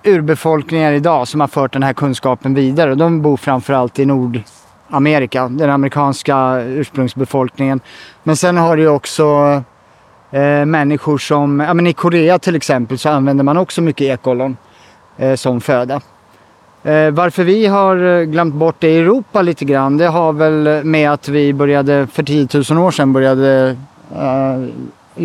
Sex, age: male, 30-49